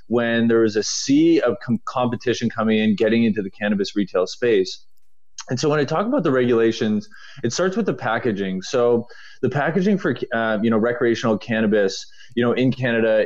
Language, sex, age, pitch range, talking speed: English, male, 20-39, 110-140 Hz, 185 wpm